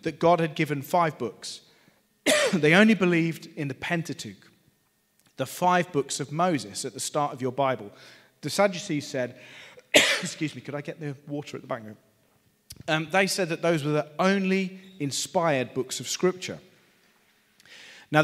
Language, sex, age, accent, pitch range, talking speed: English, male, 30-49, British, 145-190 Hz, 165 wpm